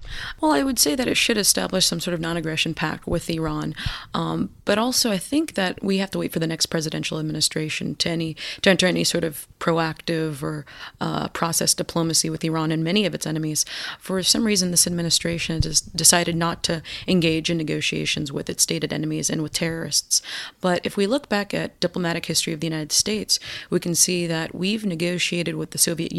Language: English